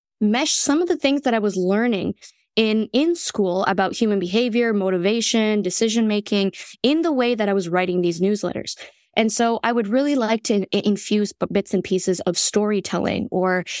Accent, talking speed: American, 180 wpm